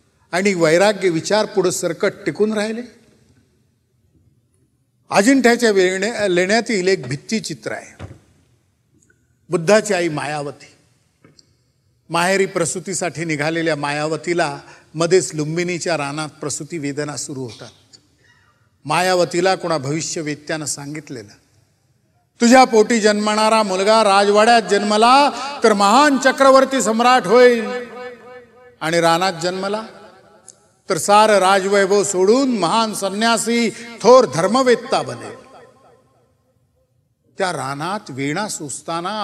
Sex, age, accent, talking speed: male, 50-69, native, 95 wpm